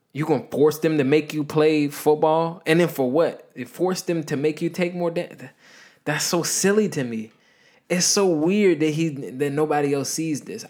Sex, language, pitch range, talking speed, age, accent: male, English, 125-165 Hz, 210 wpm, 20-39, American